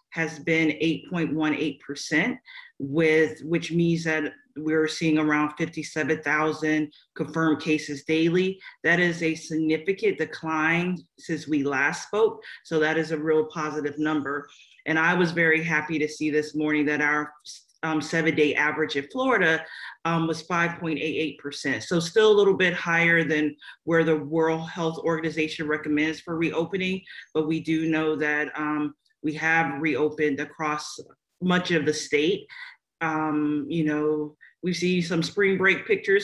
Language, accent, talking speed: English, American, 145 wpm